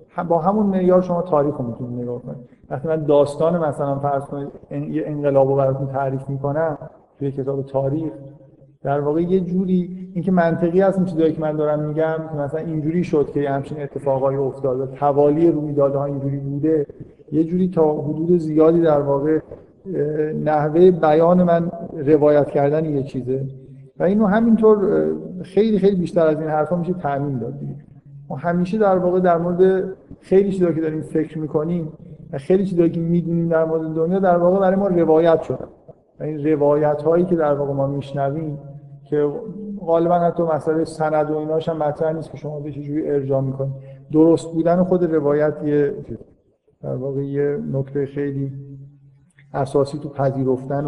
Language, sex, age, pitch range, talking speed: Persian, male, 50-69, 140-170 Hz, 165 wpm